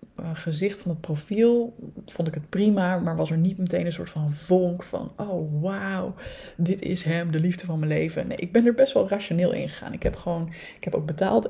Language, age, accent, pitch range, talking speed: Dutch, 20-39, Dutch, 160-195 Hz, 235 wpm